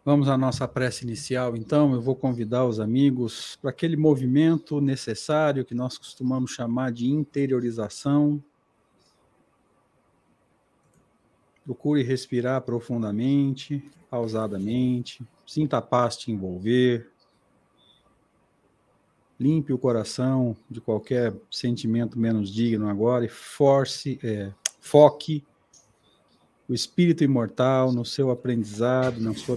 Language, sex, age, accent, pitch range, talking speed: Portuguese, male, 50-69, Brazilian, 115-140 Hz, 100 wpm